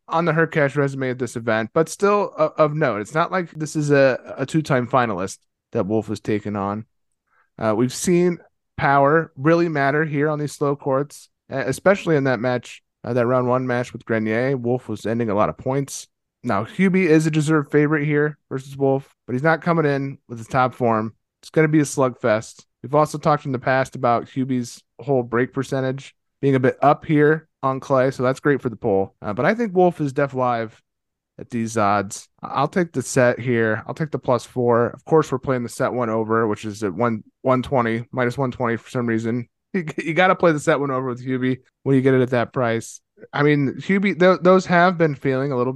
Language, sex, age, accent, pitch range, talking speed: English, male, 20-39, American, 120-150 Hz, 220 wpm